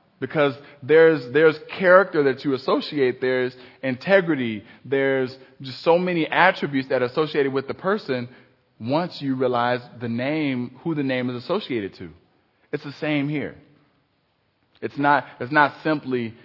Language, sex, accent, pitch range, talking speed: English, male, American, 120-150 Hz, 145 wpm